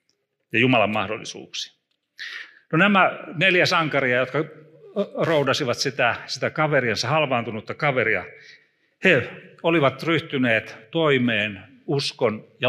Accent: native